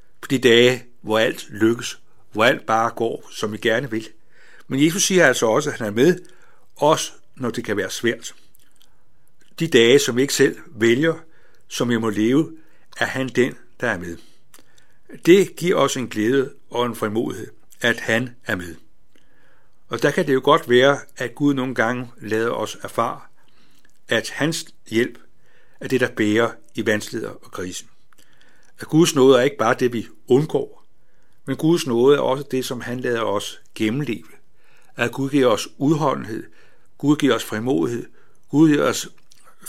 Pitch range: 110-135 Hz